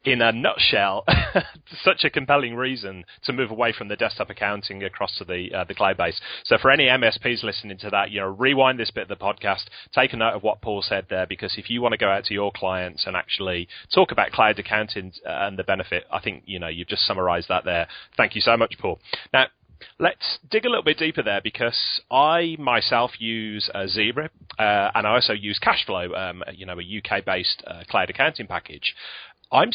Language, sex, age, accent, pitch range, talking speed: English, male, 30-49, British, 95-130 Hz, 215 wpm